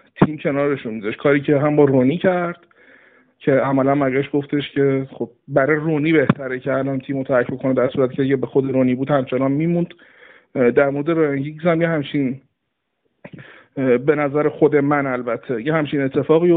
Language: Persian